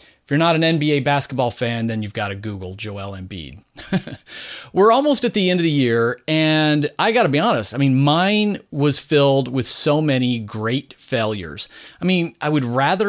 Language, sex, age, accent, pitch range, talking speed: English, male, 30-49, American, 120-160 Hz, 195 wpm